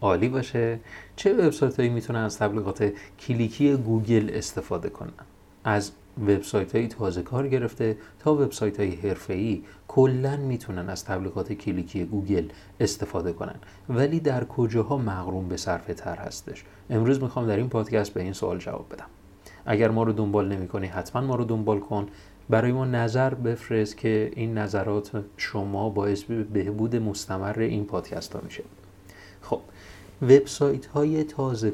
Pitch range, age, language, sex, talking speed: 100-120 Hz, 30-49, Persian, male, 140 wpm